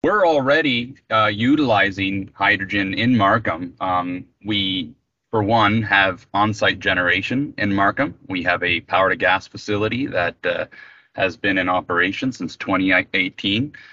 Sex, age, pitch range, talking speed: male, 30-49, 95-110 Hz, 125 wpm